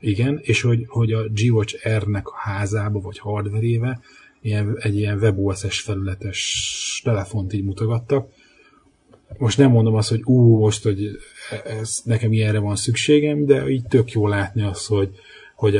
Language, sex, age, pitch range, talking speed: Hungarian, male, 30-49, 100-115 Hz, 150 wpm